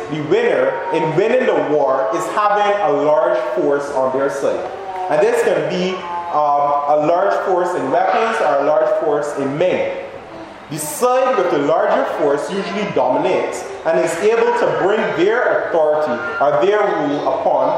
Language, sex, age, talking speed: English, male, 30-49, 165 wpm